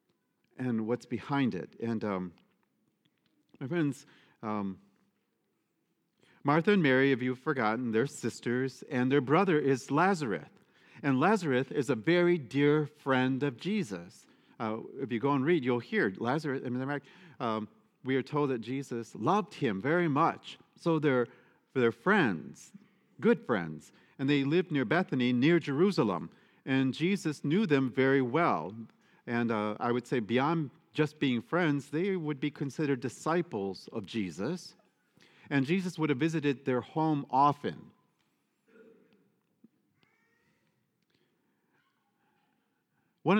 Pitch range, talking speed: 115-155 Hz, 130 wpm